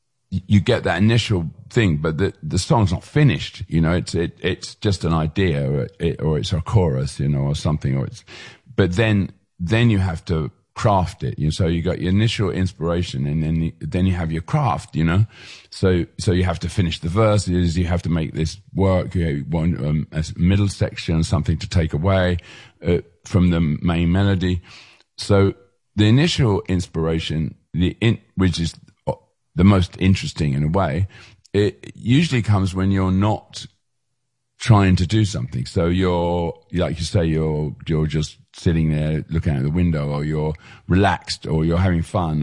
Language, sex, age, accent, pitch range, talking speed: English, male, 40-59, British, 80-100 Hz, 180 wpm